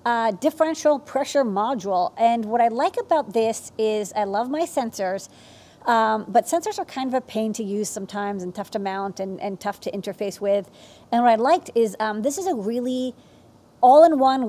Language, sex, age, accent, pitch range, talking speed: English, female, 40-59, American, 205-245 Hz, 195 wpm